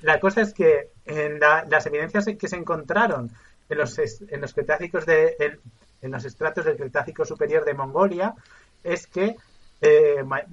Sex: male